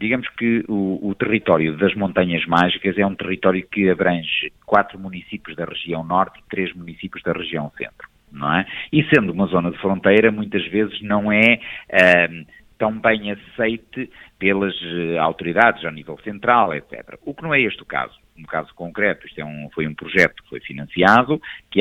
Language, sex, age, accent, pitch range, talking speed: Portuguese, male, 50-69, Portuguese, 90-110 Hz, 175 wpm